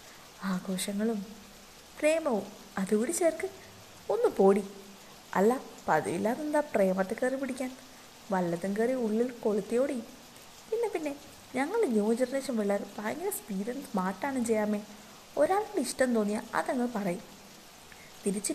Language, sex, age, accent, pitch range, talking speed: Malayalam, female, 20-39, native, 200-250 Hz, 95 wpm